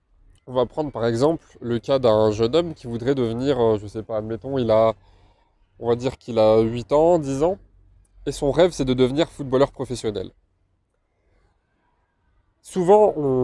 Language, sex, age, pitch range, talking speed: French, male, 20-39, 110-135 Hz, 160 wpm